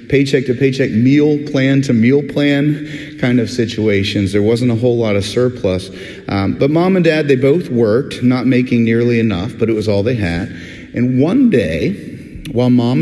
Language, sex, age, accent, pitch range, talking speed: English, male, 40-59, American, 105-135 Hz, 190 wpm